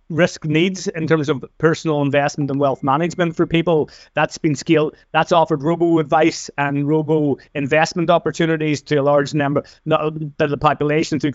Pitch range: 145-165 Hz